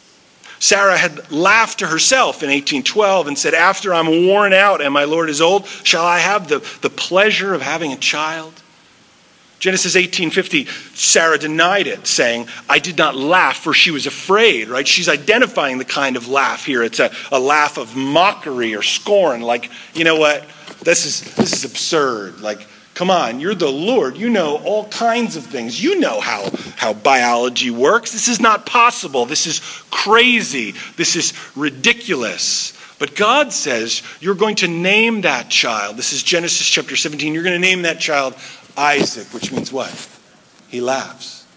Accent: American